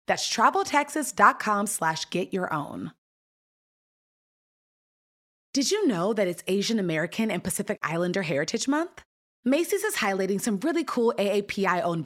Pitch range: 180-275 Hz